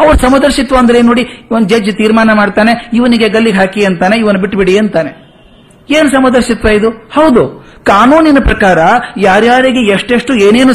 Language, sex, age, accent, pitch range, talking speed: Kannada, male, 50-69, native, 175-235 Hz, 135 wpm